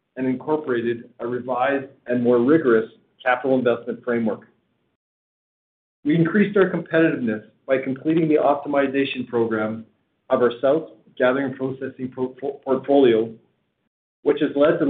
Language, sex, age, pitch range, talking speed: English, male, 40-59, 120-145 Hz, 115 wpm